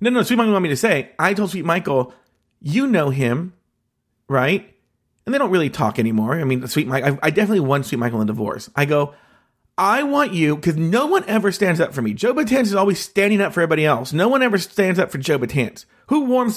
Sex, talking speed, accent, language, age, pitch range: male, 240 wpm, American, English, 40-59, 135-210 Hz